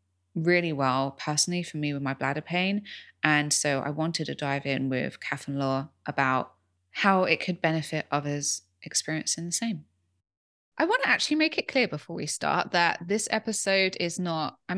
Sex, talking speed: female, 185 wpm